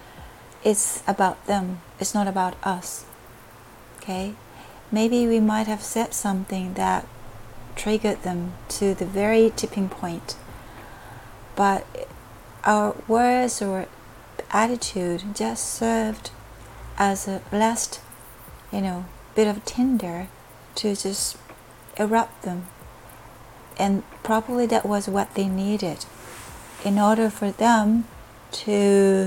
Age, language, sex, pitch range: 40-59, Japanese, female, 185-215 Hz